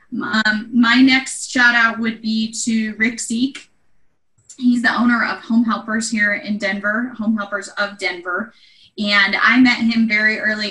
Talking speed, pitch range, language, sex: 160 wpm, 205-240 Hz, English, female